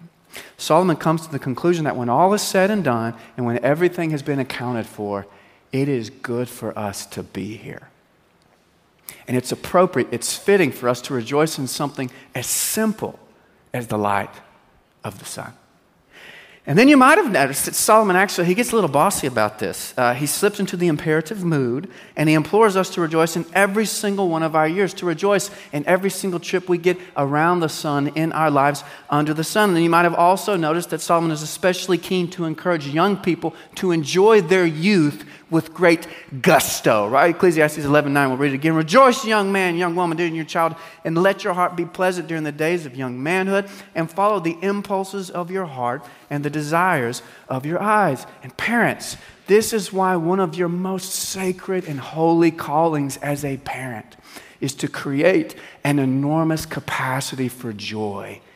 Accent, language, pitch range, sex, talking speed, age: American, English, 135-185 Hz, male, 190 wpm, 40-59